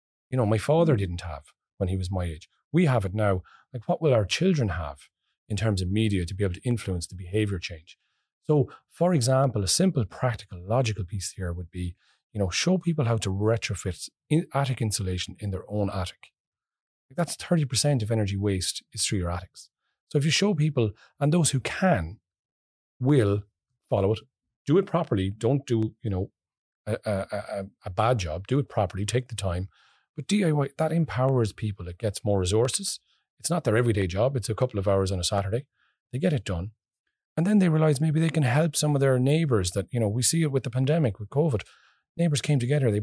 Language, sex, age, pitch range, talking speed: English, male, 30-49, 100-145 Hz, 210 wpm